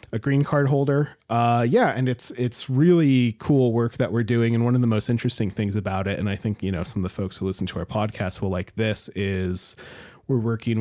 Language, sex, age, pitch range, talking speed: English, male, 30-49, 100-120 Hz, 245 wpm